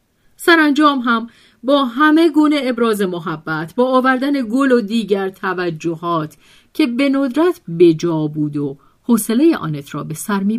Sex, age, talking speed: female, 50-69, 145 wpm